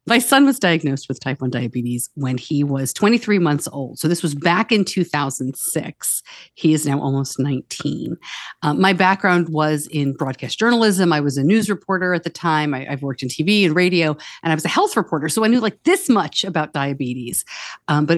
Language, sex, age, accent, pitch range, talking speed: English, female, 50-69, American, 135-175 Hz, 210 wpm